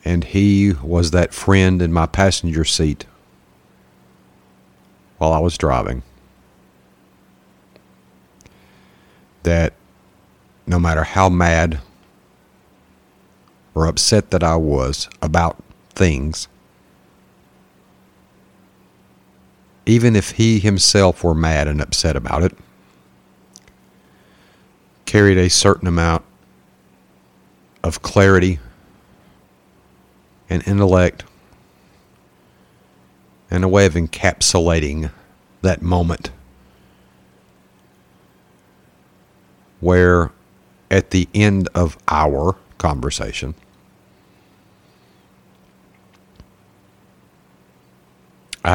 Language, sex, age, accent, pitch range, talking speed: English, male, 50-69, American, 70-95 Hz, 70 wpm